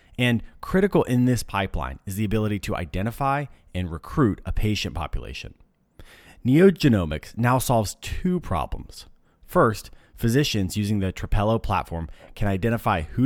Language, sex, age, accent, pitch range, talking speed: English, male, 30-49, American, 85-120 Hz, 130 wpm